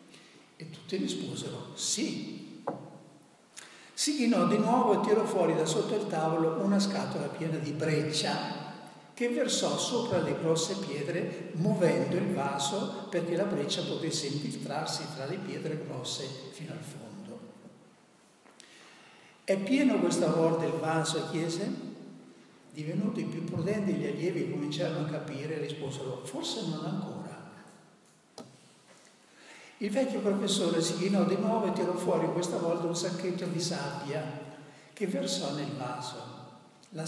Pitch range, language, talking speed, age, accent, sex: 150-190 Hz, Italian, 135 wpm, 60-79, native, male